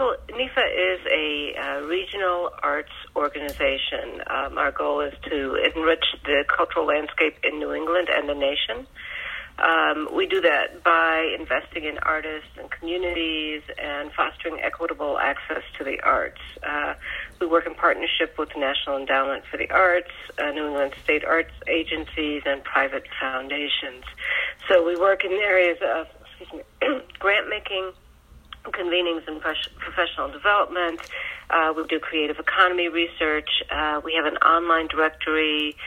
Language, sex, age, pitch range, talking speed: English, female, 40-59, 145-170 Hz, 145 wpm